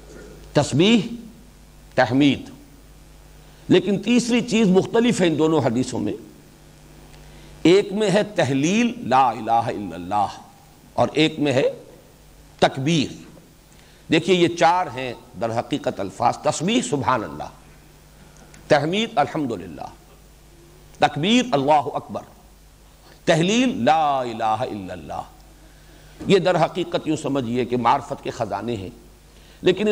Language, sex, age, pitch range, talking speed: English, male, 50-69, 140-215 Hz, 110 wpm